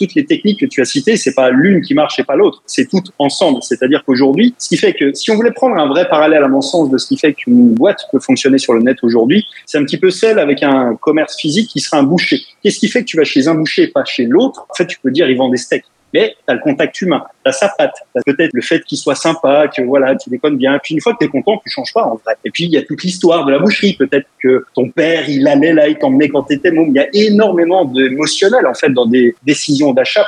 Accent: French